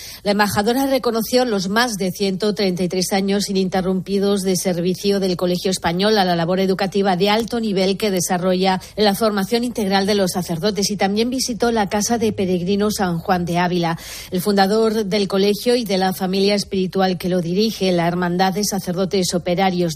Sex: female